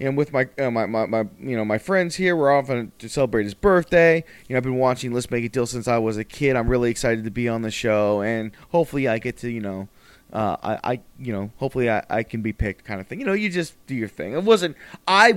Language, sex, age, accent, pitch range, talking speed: English, male, 20-39, American, 120-195 Hz, 275 wpm